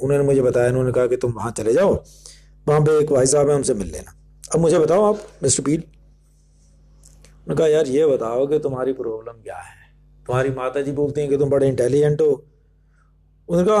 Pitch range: 140-175 Hz